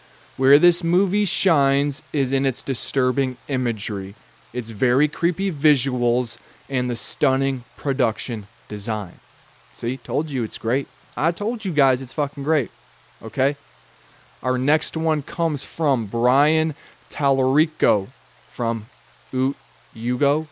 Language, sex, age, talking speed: English, male, 20-39, 115 wpm